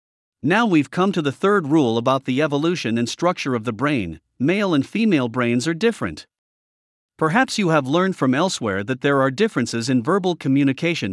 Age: 50-69